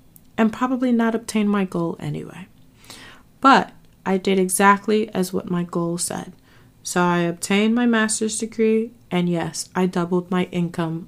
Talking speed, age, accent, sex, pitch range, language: 150 wpm, 20-39, American, female, 165-200 Hz, English